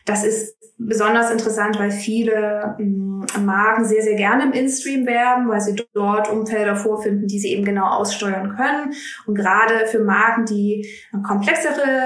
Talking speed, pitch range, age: 150 wpm, 200-230 Hz, 20-39